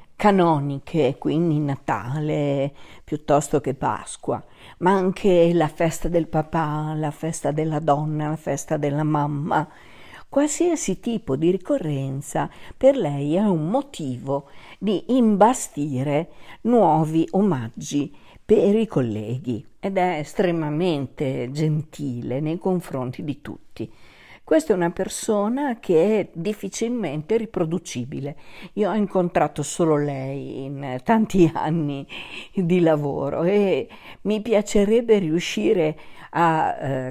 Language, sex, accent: Italian, female, native